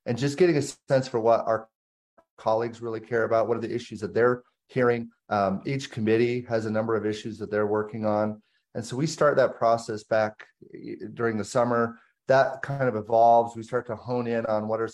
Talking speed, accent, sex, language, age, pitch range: 215 wpm, American, male, English, 30-49, 110-125 Hz